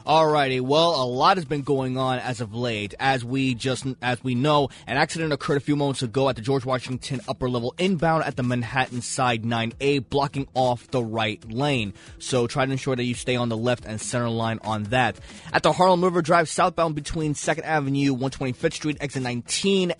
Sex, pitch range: male, 125-160 Hz